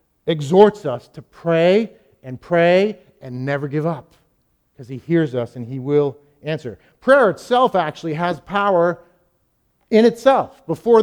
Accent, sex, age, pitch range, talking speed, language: American, male, 50-69, 155-200 Hz, 140 wpm, English